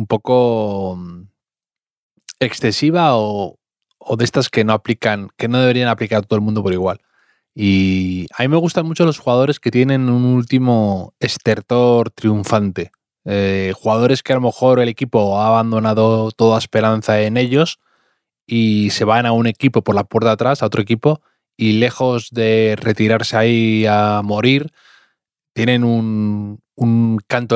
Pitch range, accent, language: 100-120 Hz, Spanish, Spanish